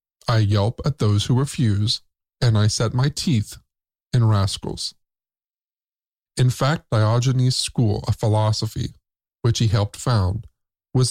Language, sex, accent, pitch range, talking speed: English, male, American, 110-130 Hz, 130 wpm